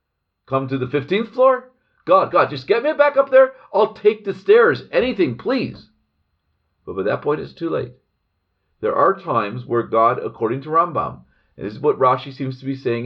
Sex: male